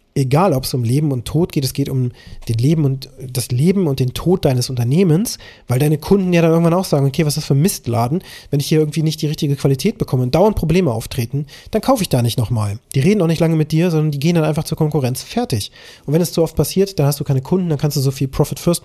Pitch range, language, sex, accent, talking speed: 135-170 Hz, German, male, German, 275 wpm